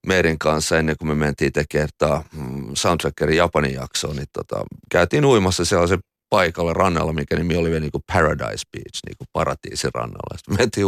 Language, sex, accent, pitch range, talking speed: Finnish, male, native, 75-90 Hz, 155 wpm